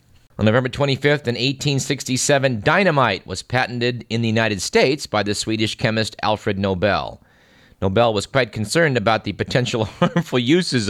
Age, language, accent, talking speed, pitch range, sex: 50-69, English, American, 150 wpm, 110-140 Hz, male